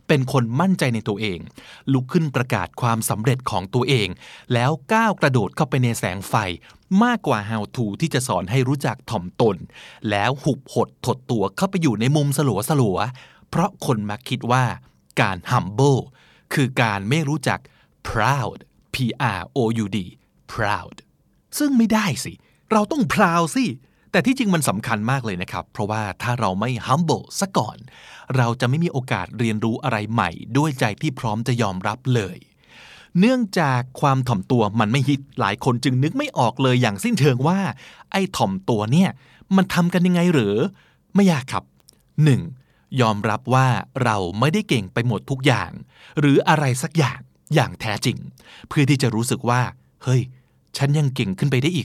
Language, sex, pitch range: Thai, male, 110-150 Hz